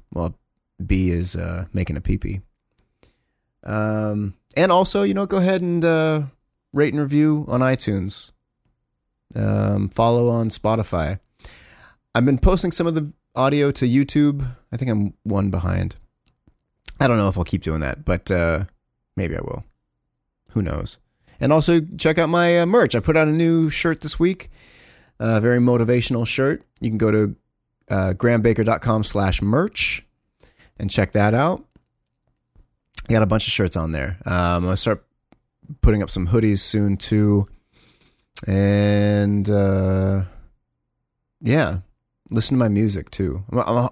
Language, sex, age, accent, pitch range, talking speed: English, male, 30-49, American, 95-130 Hz, 150 wpm